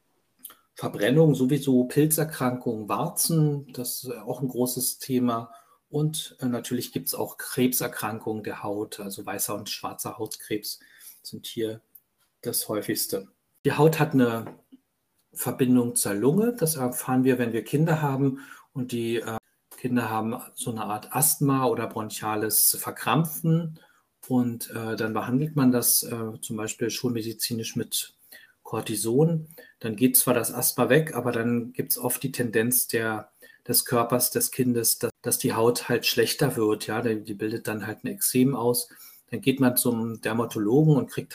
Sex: male